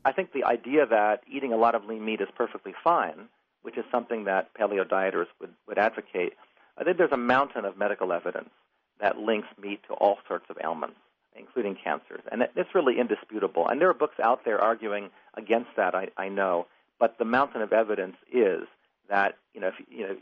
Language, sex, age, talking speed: English, male, 40-59, 205 wpm